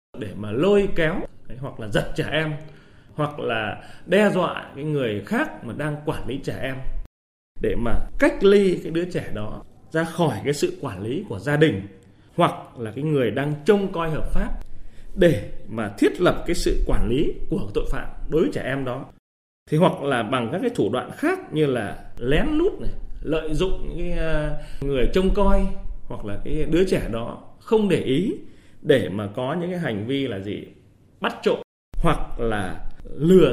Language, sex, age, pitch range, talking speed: Vietnamese, male, 20-39, 110-170 Hz, 195 wpm